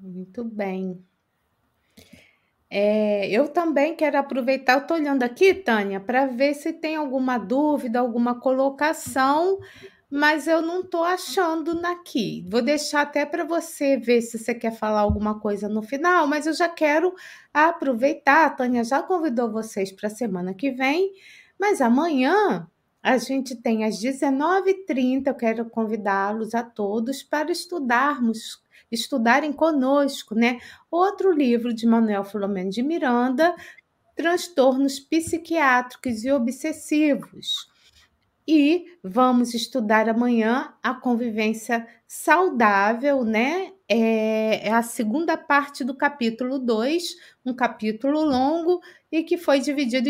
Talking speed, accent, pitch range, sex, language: 125 wpm, Brazilian, 235-320 Hz, female, Portuguese